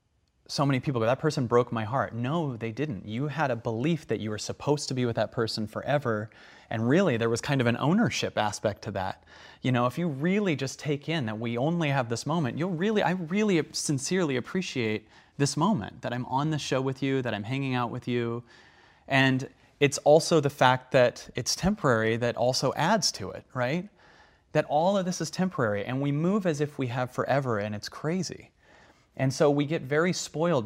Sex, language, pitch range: male, English, 120-155 Hz